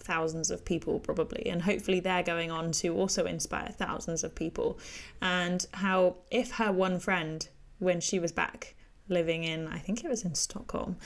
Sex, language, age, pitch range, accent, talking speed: female, English, 10-29, 180-220 Hz, British, 180 wpm